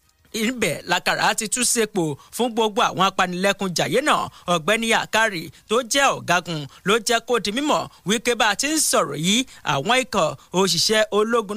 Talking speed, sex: 155 wpm, male